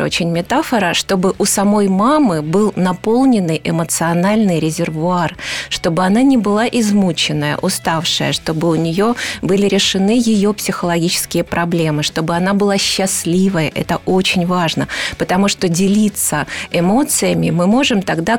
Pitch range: 170-205 Hz